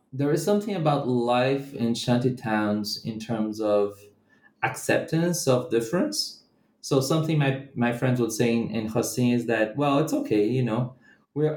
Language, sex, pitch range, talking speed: English, male, 110-140 Hz, 165 wpm